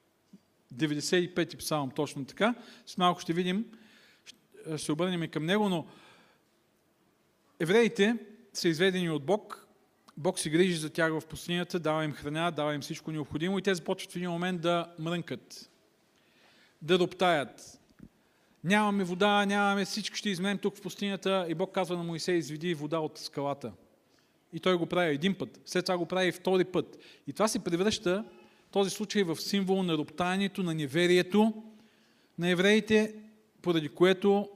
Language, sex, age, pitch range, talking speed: Bulgarian, male, 40-59, 155-190 Hz, 160 wpm